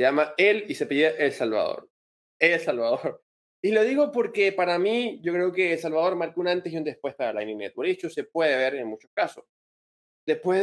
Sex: male